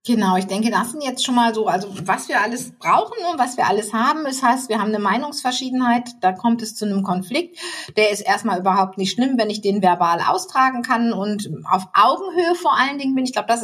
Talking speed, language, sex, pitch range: 235 wpm, German, female, 195-250 Hz